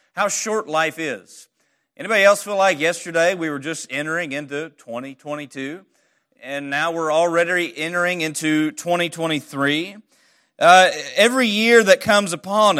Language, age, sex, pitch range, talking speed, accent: English, 40-59, male, 160-215 Hz, 130 wpm, American